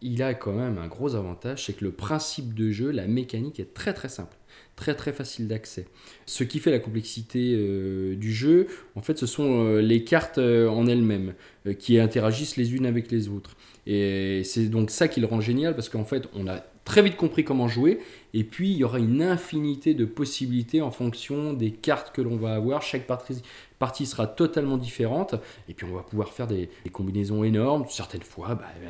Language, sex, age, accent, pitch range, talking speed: French, male, 20-39, French, 100-130 Hz, 210 wpm